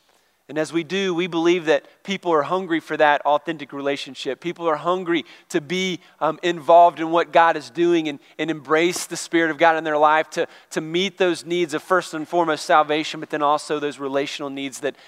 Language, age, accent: English, 40-59, American